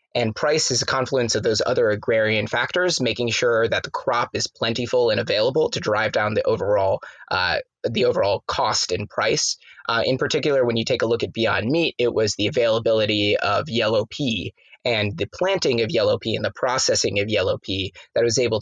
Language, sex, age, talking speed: English, male, 20-39, 205 wpm